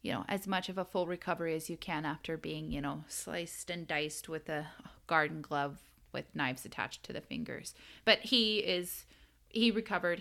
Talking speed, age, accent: 195 wpm, 20-39, American